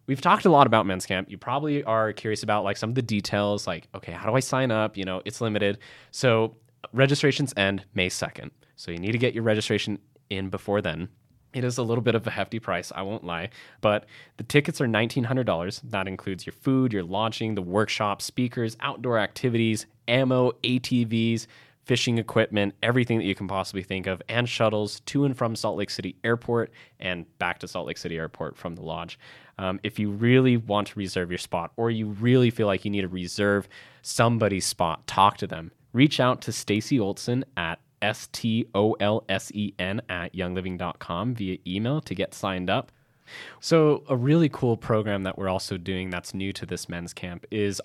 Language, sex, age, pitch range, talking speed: English, male, 20-39, 95-120 Hz, 195 wpm